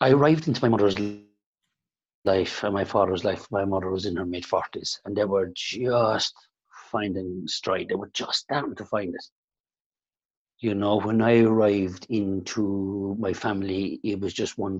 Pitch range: 95-110 Hz